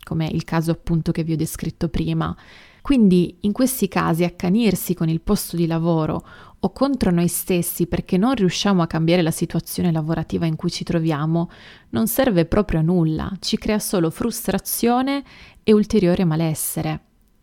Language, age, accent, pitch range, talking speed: Italian, 30-49, native, 165-205 Hz, 160 wpm